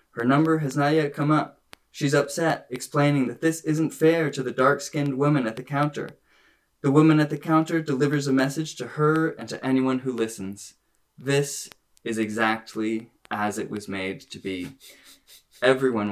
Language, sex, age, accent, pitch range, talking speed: English, male, 20-39, American, 115-145 Hz, 170 wpm